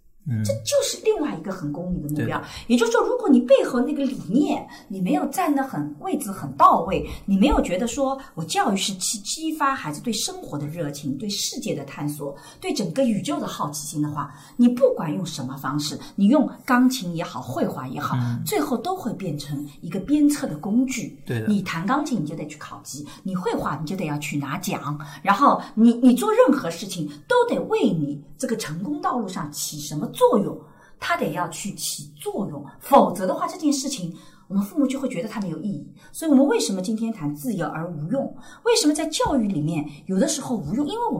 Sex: female